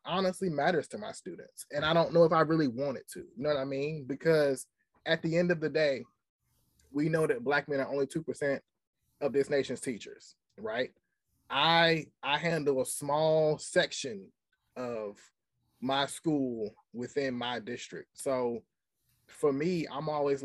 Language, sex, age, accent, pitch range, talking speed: English, male, 20-39, American, 135-165 Hz, 165 wpm